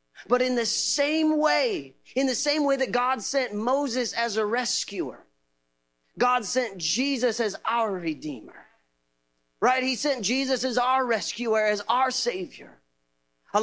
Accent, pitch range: American, 170-250 Hz